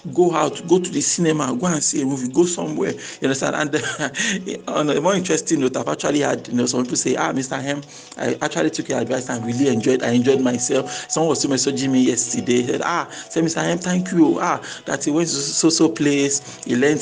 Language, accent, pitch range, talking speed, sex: English, Nigerian, 145-225 Hz, 235 wpm, male